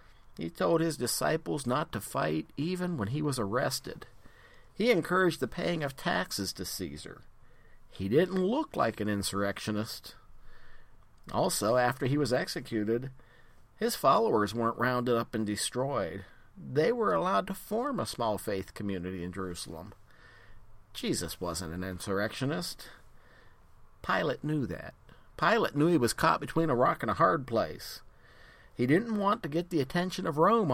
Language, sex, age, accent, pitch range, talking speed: English, male, 50-69, American, 100-155 Hz, 150 wpm